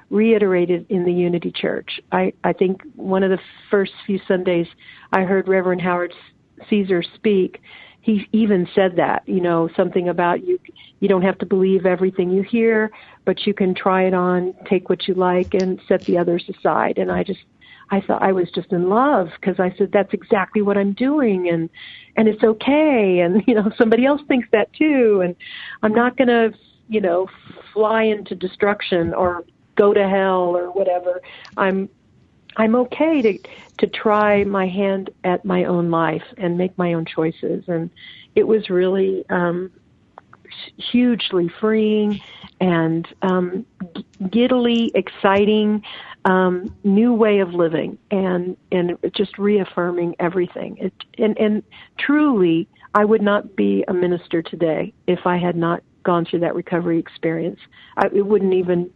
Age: 50-69